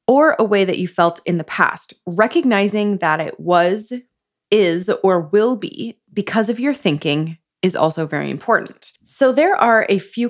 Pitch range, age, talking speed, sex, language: 160-210 Hz, 20-39, 175 wpm, female, English